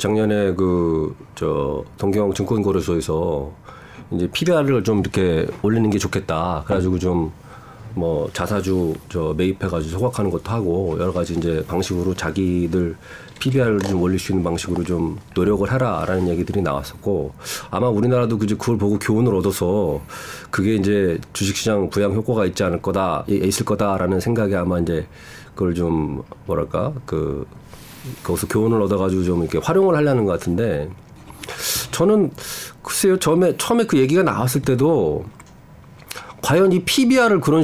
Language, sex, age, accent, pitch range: Korean, male, 40-59, native, 90-130 Hz